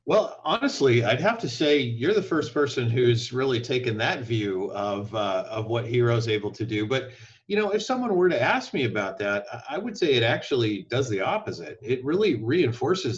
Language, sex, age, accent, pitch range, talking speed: English, male, 40-59, American, 110-135 Hz, 205 wpm